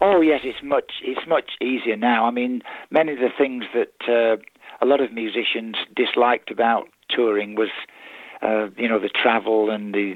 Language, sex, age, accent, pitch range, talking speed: English, male, 60-79, British, 110-130 Hz, 190 wpm